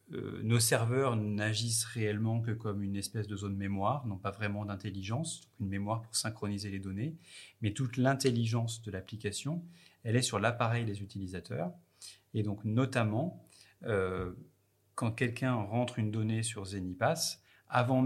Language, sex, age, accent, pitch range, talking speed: French, male, 30-49, French, 100-125 Hz, 145 wpm